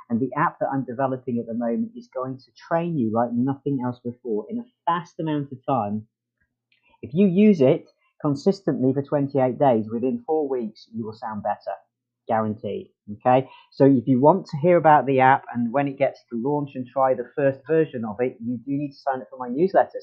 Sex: male